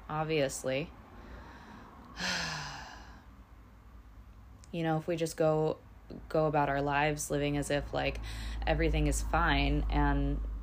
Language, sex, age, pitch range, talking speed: English, female, 20-39, 115-180 Hz, 105 wpm